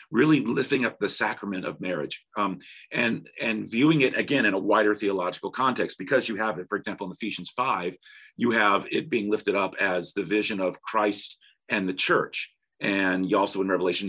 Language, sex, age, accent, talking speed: English, male, 40-59, American, 195 wpm